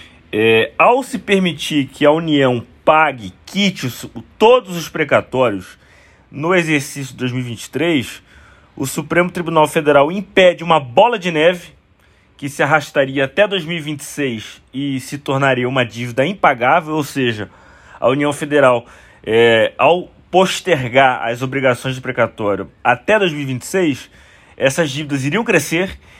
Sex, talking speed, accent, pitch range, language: male, 125 wpm, Brazilian, 130-175 Hz, Portuguese